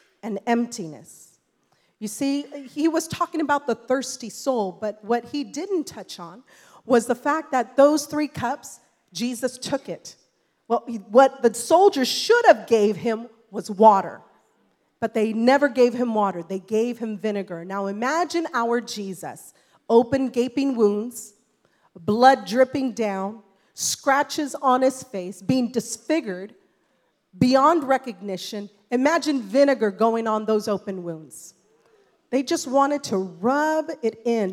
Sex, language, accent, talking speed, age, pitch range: female, English, American, 135 wpm, 40-59, 210-285 Hz